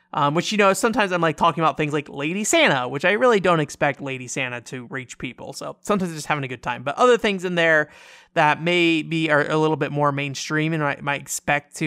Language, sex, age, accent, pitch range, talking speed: English, male, 20-39, American, 140-195 Hz, 245 wpm